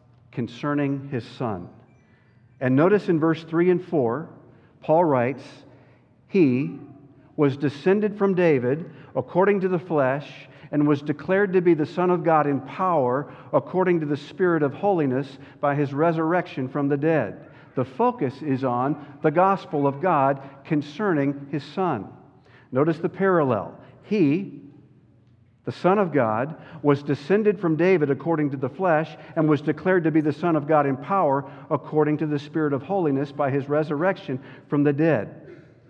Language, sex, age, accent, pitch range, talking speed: English, male, 50-69, American, 130-165 Hz, 155 wpm